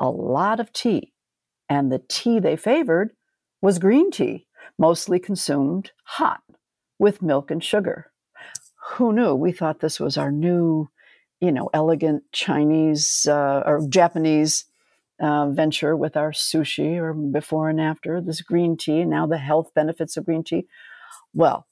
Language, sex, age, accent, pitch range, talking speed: English, female, 60-79, American, 150-195 Hz, 150 wpm